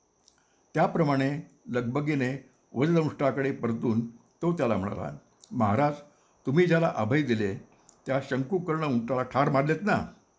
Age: 60-79